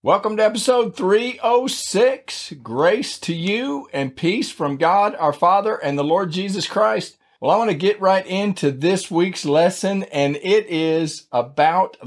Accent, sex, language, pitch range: American, male, English, 125-170 Hz